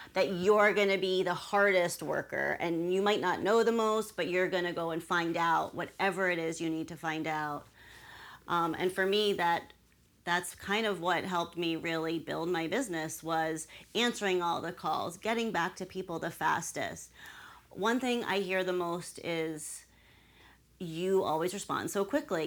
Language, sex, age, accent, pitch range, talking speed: English, female, 30-49, American, 170-230 Hz, 185 wpm